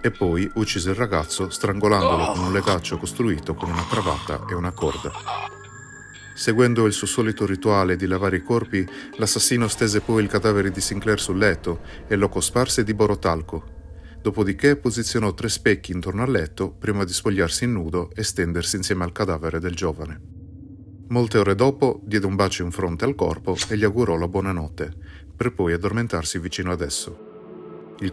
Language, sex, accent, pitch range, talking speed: Italian, male, native, 90-110 Hz, 170 wpm